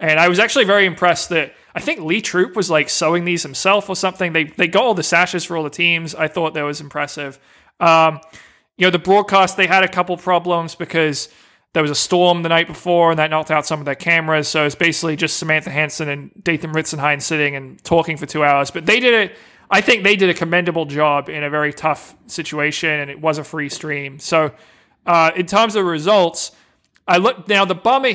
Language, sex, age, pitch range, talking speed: English, male, 20-39, 155-185 Hz, 230 wpm